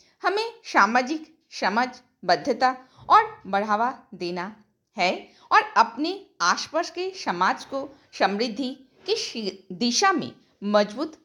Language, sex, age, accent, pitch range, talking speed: Hindi, female, 50-69, native, 235-375 Hz, 100 wpm